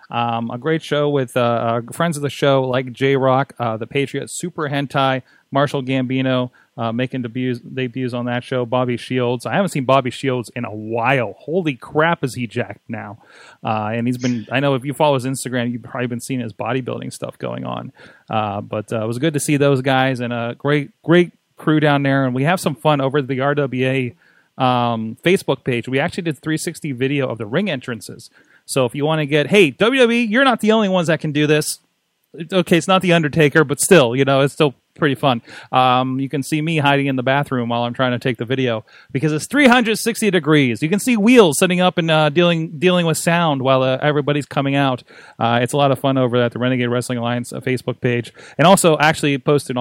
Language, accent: English, American